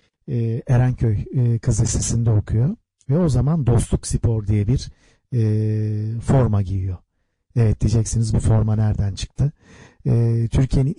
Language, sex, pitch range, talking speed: Turkish, male, 105-125 Hz, 125 wpm